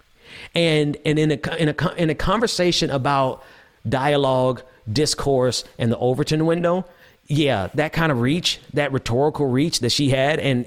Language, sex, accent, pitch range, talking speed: English, male, American, 125-170 Hz, 145 wpm